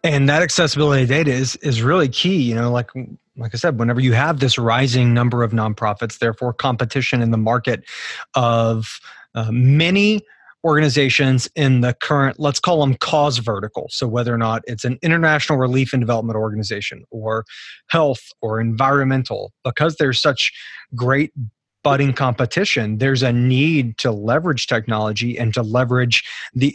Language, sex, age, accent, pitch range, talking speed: English, male, 30-49, American, 120-145 Hz, 165 wpm